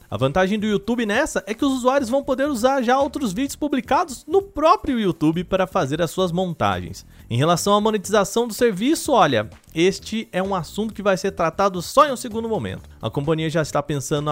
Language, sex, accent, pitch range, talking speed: Portuguese, male, Brazilian, 180-250 Hz, 205 wpm